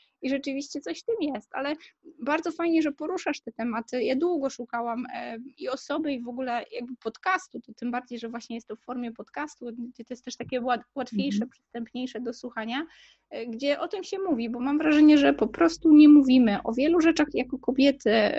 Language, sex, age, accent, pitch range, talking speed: Polish, female, 20-39, native, 230-295 Hz, 195 wpm